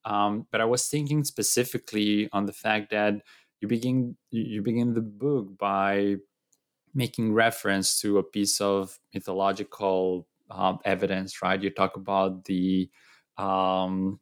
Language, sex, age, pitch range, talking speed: English, male, 20-39, 95-120 Hz, 135 wpm